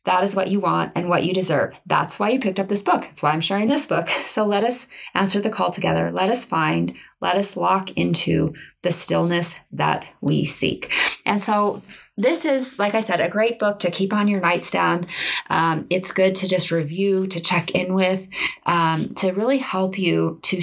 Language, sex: English, female